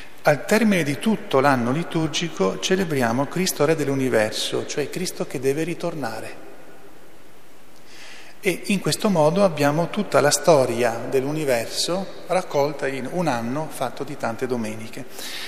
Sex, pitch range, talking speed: male, 125-160 Hz, 125 wpm